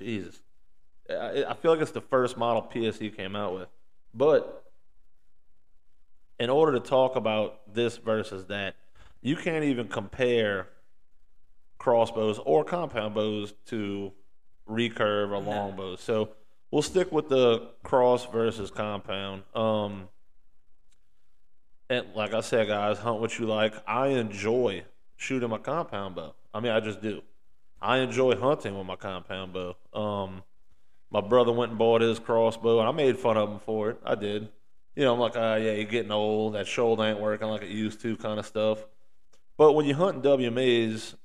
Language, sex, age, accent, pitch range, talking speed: English, male, 30-49, American, 105-120 Hz, 165 wpm